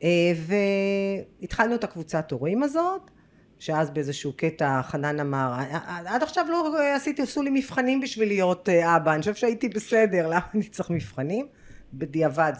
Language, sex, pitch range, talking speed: Hebrew, female, 150-225 Hz, 145 wpm